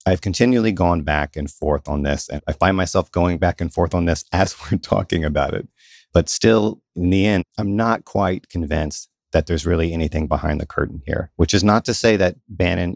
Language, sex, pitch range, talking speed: English, male, 80-100 Hz, 220 wpm